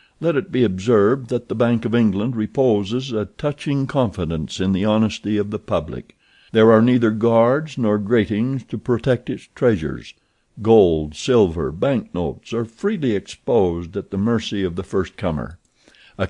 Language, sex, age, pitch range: Korean, male, 60-79, 100-120 Hz